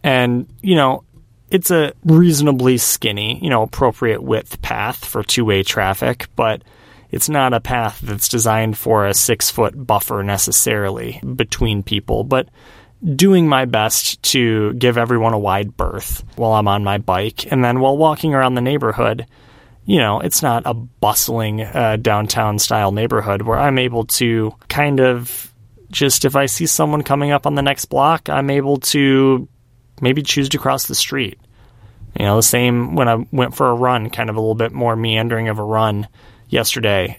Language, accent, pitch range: English, American, 105-130 Hz